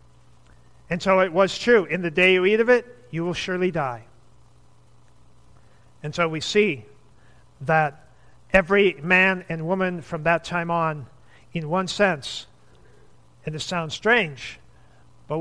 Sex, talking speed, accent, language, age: male, 145 wpm, American, English, 50-69